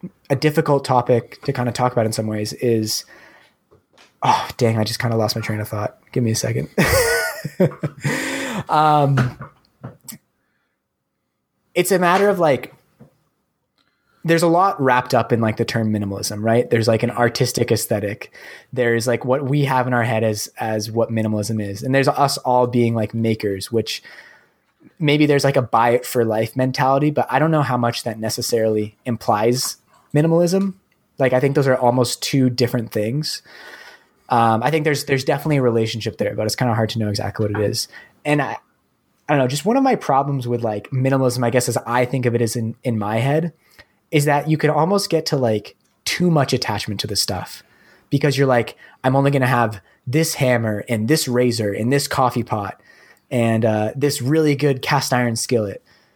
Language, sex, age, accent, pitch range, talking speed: English, male, 20-39, American, 115-140 Hz, 195 wpm